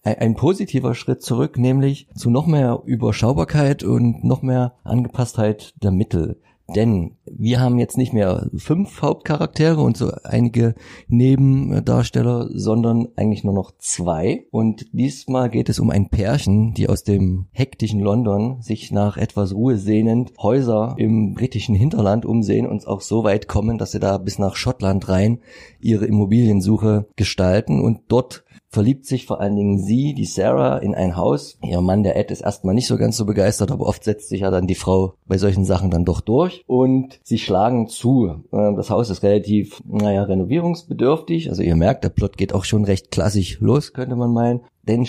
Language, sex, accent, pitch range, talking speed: German, male, German, 100-125 Hz, 175 wpm